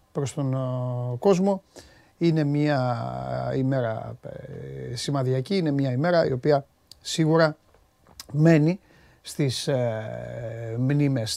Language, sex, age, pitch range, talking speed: Greek, male, 30-49, 125-165 Hz, 85 wpm